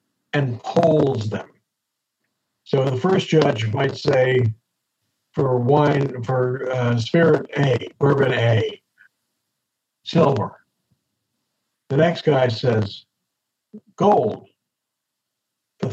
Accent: American